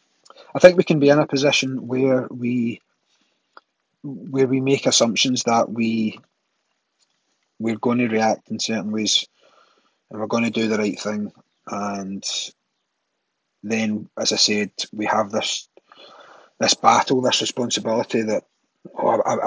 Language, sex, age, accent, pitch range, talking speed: English, male, 30-49, British, 110-140 Hz, 140 wpm